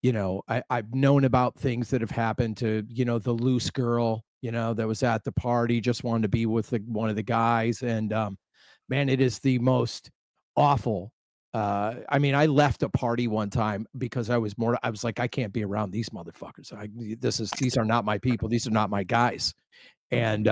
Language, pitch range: English, 110-125 Hz